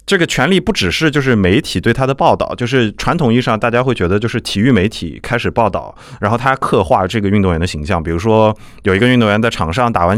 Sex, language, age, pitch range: male, Chinese, 20-39, 90-120 Hz